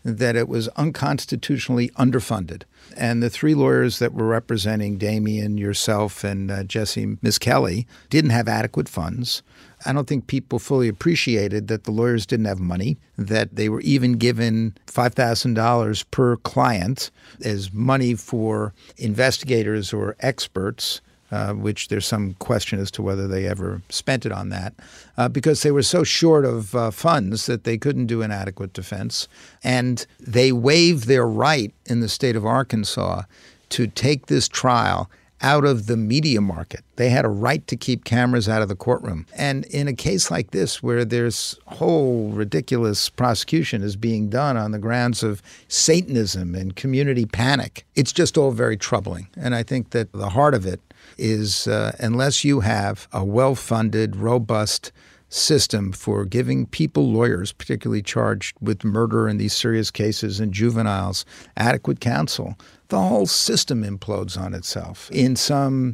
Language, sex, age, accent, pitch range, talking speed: English, male, 50-69, American, 105-125 Hz, 160 wpm